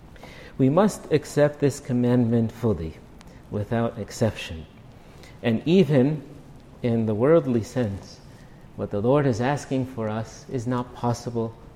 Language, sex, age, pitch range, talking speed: English, male, 50-69, 115-135 Hz, 120 wpm